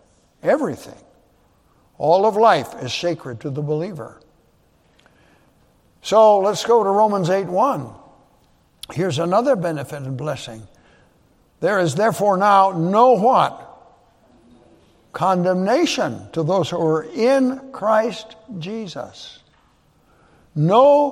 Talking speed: 100 wpm